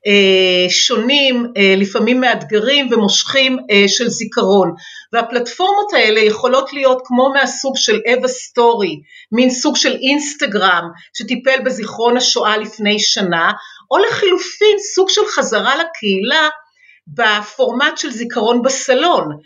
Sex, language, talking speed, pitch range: female, Hebrew, 105 wpm, 220-300 Hz